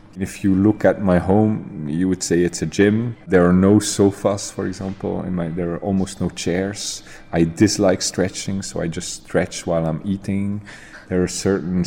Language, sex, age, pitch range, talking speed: Czech, male, 30-49, 90-105 Hz, 190 wpm